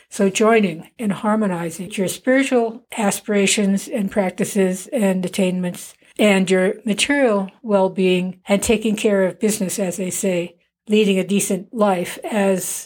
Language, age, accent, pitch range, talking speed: English, 60-79, American, 185-220 Hz, 130 wpm